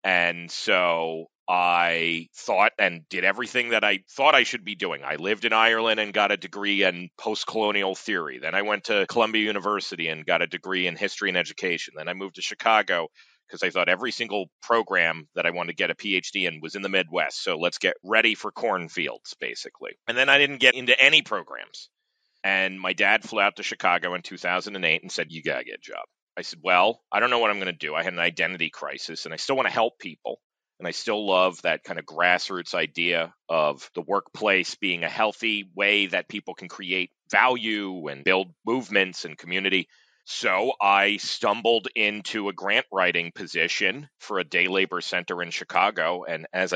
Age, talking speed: 30-49, 205 wpm